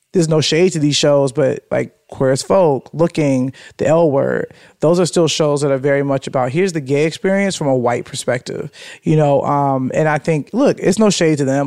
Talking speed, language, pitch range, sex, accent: 225 wpm, English, 145-175 Hz, male, American